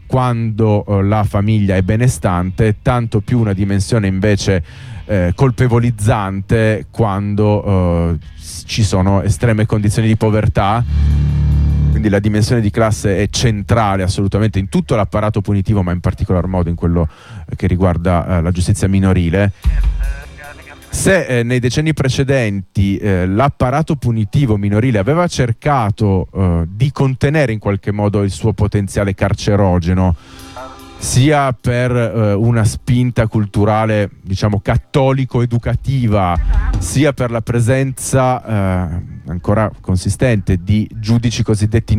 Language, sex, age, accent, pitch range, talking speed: Italian, male, 30-49, native, 95-120 Hz, 120 wpm